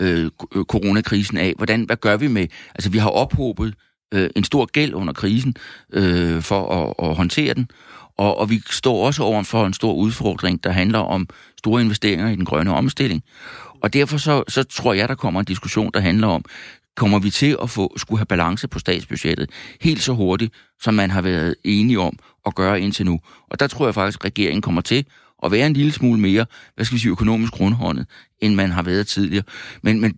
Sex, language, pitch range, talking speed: male, Danish, 100-120 Hz, 210 wpm